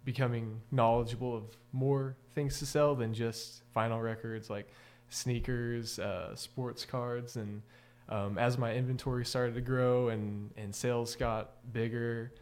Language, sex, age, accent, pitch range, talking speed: English, male, 20-39, American, 110-125 Hz, 140 wpm